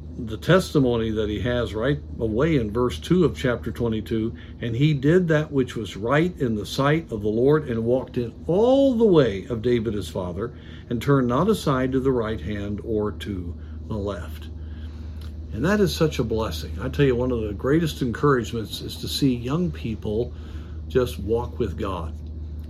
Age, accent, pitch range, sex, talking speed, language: 60-79, American, 80-135 Hz, male, 190 wpm, English